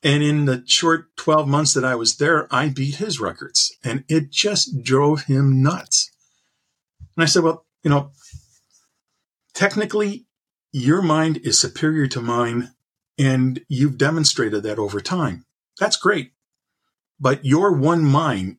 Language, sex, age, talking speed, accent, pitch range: English, male, 50-69, 145 wpm, American, 125-165 Hz